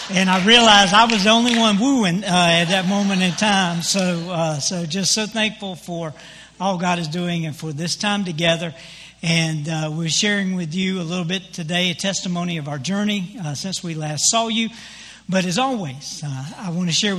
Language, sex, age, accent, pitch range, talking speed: English, male, 60-79, American, 170-215 Hz, 210 wpm